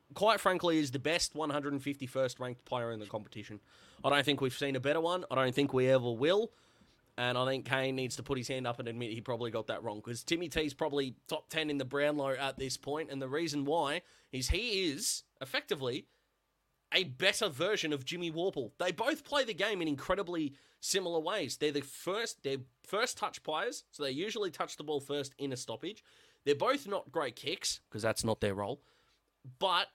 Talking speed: 210 wpm